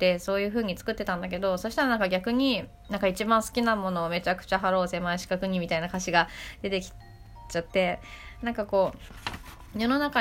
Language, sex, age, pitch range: Japanese, female, 20-39, 185-220 Hz